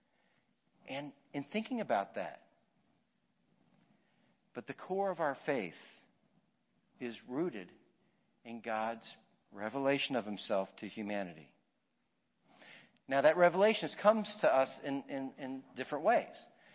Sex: male